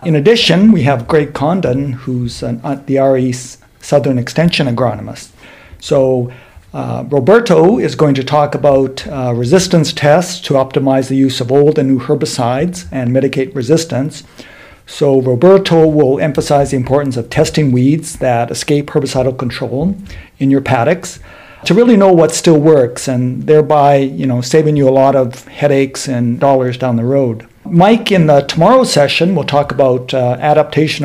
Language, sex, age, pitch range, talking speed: English, male, 60-79, 130-155 Hz, 160 wpm